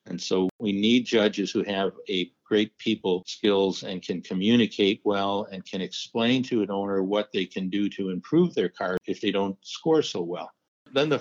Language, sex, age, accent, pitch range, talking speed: English, male, 60-79, American, 95-105 Hz, 200 wpm